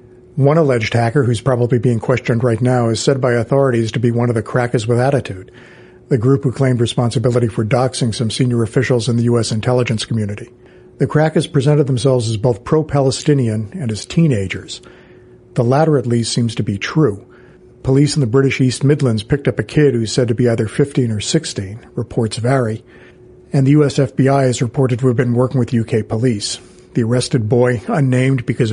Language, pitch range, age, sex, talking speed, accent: English, 120-135 Hz, 50-69, male, 190 wpm, American